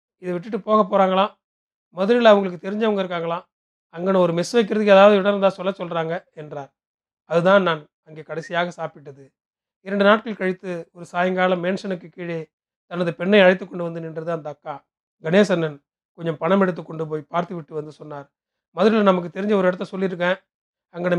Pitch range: 160-195 Hz